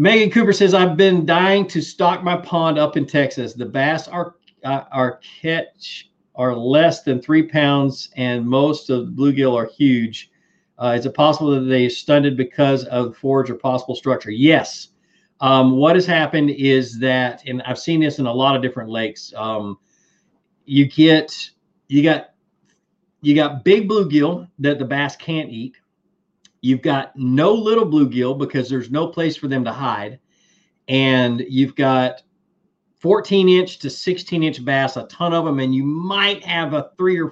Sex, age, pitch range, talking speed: male, 40-59, 130-165 Hz, 170 wpm